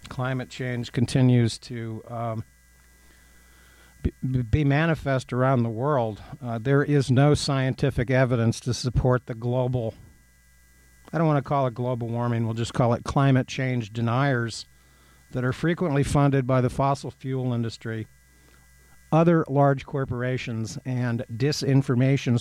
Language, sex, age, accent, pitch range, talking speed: English, male, 50-69, American, 110-135 Hz, 135 wpm